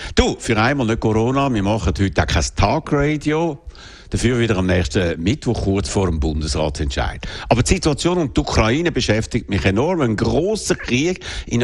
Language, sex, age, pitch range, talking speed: German, male, 60-79, 95-135 Hz, 170 wpm